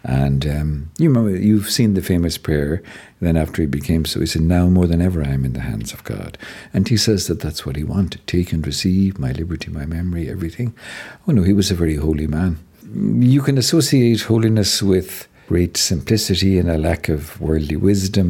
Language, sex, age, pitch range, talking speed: English, male, 60-79, 80-105 Hz, 210 wpm